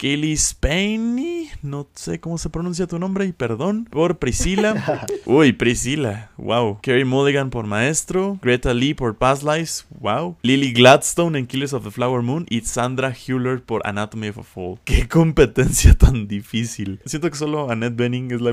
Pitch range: 115-150 Hz